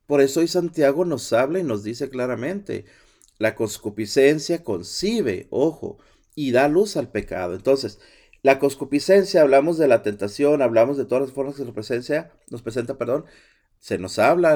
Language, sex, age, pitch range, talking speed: Spanish, male, 40-59, 115-155 Hz, 165 wpm